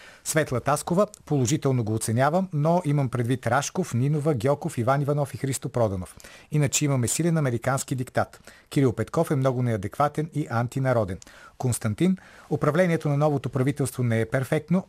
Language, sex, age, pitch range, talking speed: Bulgarian, male, 40-59, 120-150 Hz, 145 wpm